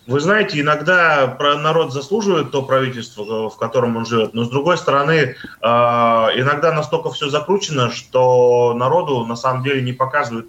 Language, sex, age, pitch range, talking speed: Russian, male, 20-39, 125-155 Hz, 150 wpm